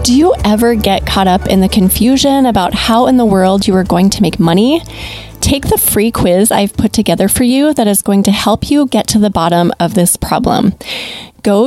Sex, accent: female, American